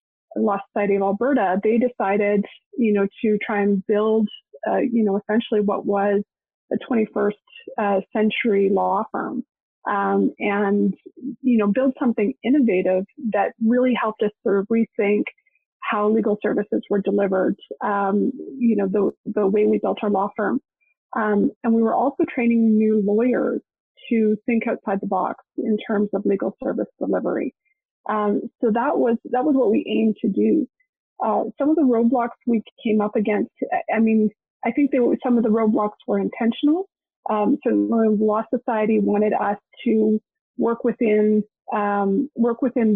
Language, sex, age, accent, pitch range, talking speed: English, female, 30-49, American, 205-240 Hz, 165 wpm